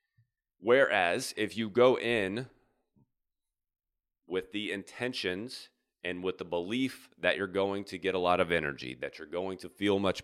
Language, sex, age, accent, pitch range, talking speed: English, male, 30-49, American, 90-120 Hz, 160 wpm